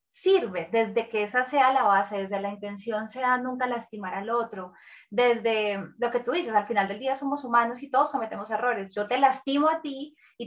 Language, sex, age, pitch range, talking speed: Spanish, female, 20-39, 215-275 Hz, 205 wpm